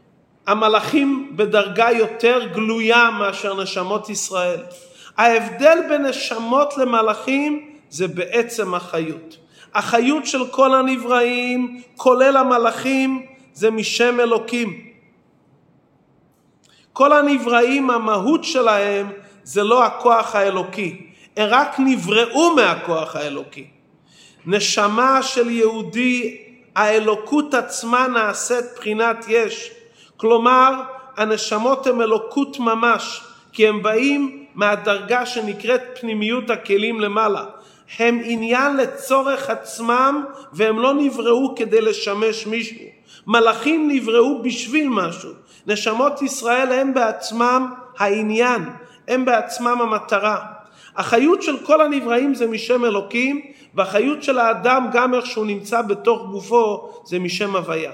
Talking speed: 100 wpm